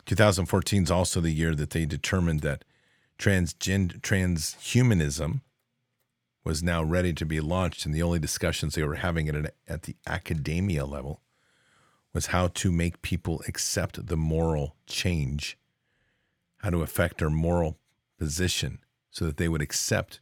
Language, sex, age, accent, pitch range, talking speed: English, male, 40-59, American, 80-105 Hz, 140 wpm